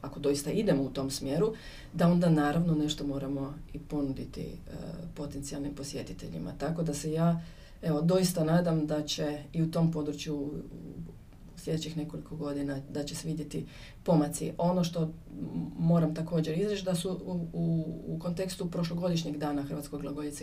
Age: 30-49